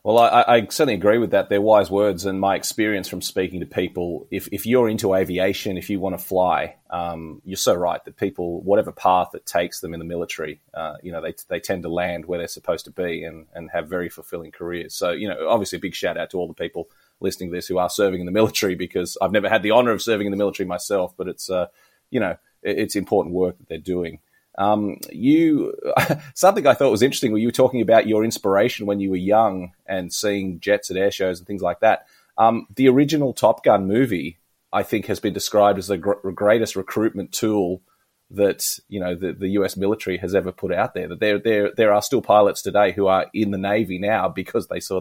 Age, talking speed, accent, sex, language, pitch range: 30-49, 240 wpm, Australian, male, English, 90-110 Hz